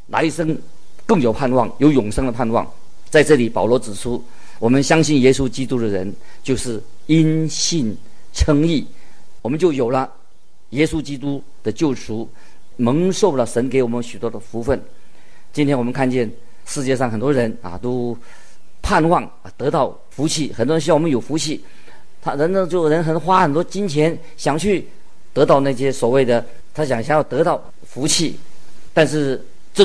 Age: 40-59